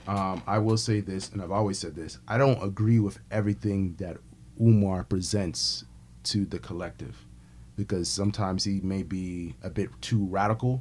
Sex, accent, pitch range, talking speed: male, American, 90-115 Hz, 165 wpm